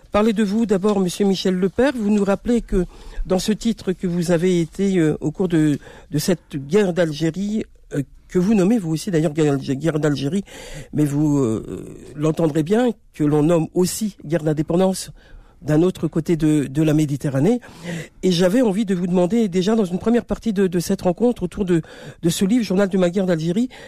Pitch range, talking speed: 155-200 Hz, 200 wpm